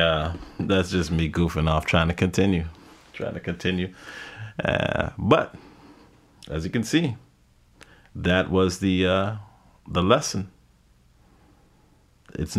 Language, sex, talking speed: English, male, 120 wpm